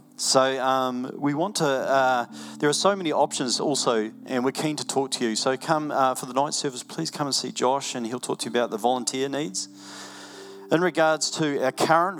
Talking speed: 220 wpm